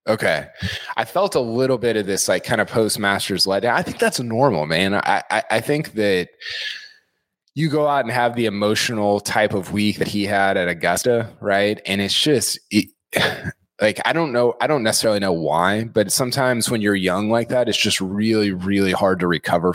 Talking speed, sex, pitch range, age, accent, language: 205 wpm, male, 95-115 Hz, 20-39, American, English